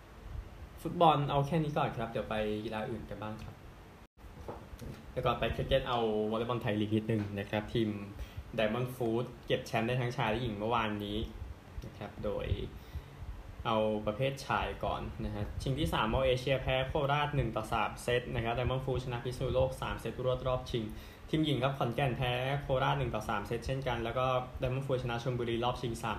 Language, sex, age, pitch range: Thai, male, 10-29, 110-130 Hz